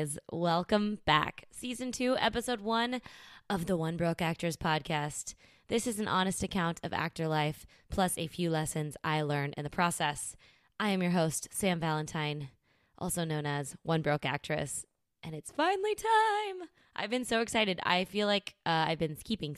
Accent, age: American, 20-39